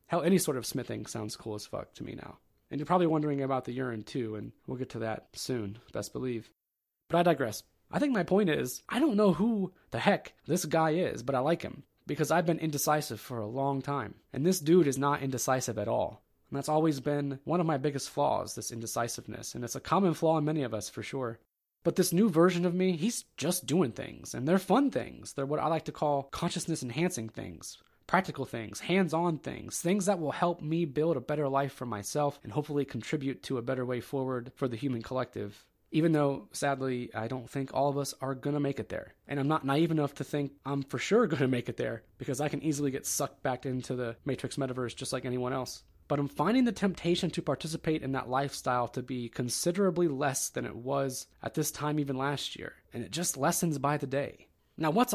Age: 20-39